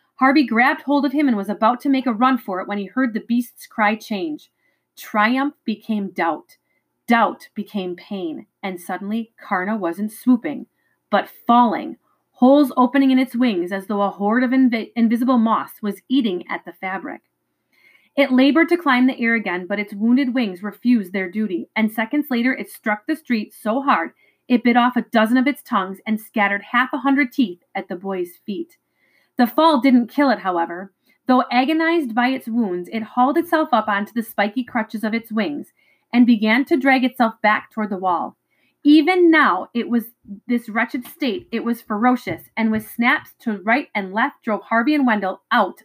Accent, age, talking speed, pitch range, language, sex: American, 30-49, 190 wpm, 205-260 Hz, English, female